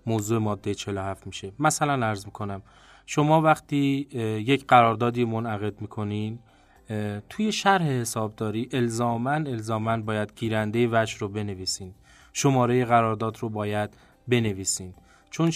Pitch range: 105-125 Hz